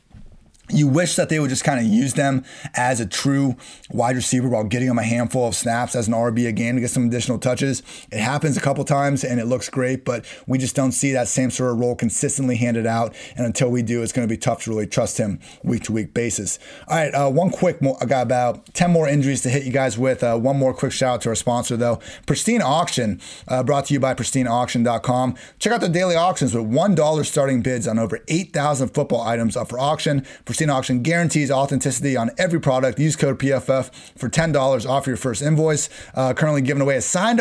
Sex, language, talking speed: male, English, 230 wpm